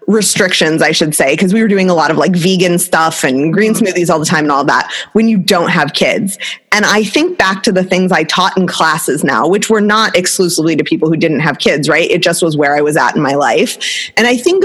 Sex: female